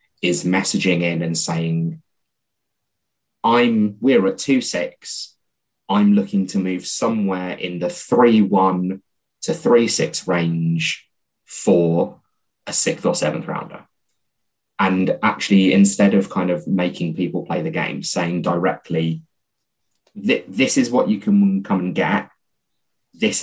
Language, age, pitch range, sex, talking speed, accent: English, 20-39, 85-105 Hz, male, 125 wpm, British